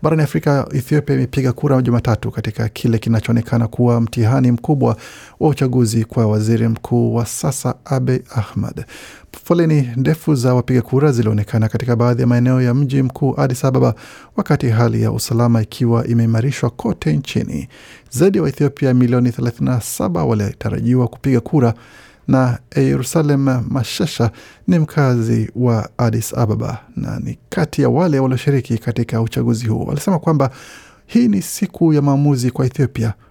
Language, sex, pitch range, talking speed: Swahili, male, 115-140 Hz, 140 wpm